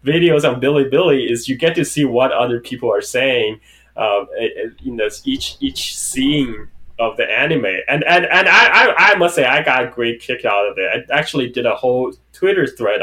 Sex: male